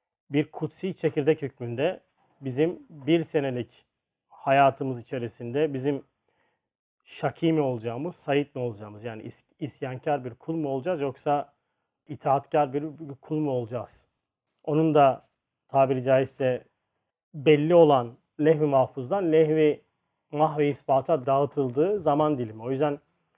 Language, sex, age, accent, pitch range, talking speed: Turkish, male, 40-59, native, 130-155 Hz, 115 wpm